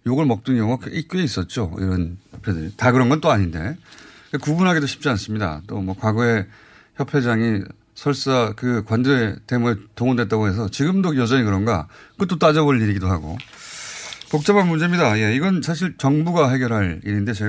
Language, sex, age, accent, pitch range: Korean, male, 30-49, native, 105-150 Hz